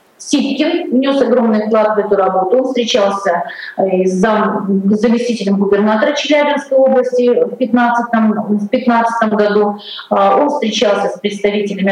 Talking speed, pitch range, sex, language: 115 wpm, 200-250 Hz, female, Russian